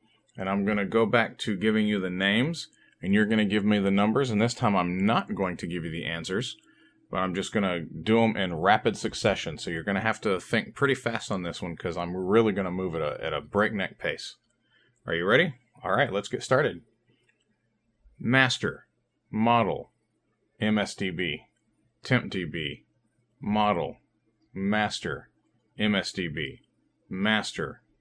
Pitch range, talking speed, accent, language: 100-125 Hz, 170 wpm, American, English